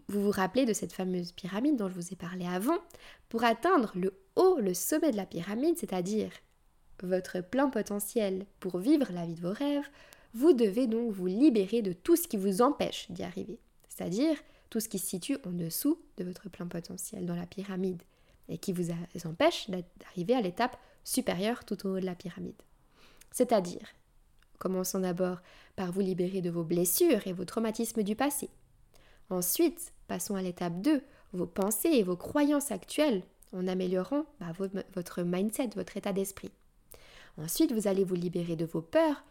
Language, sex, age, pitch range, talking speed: French, female, 20-39, 180-240 Hz, 175 wpm